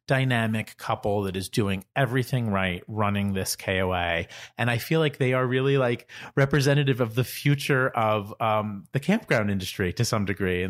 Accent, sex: American, male